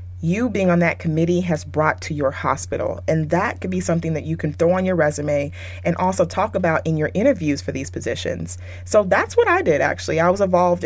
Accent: American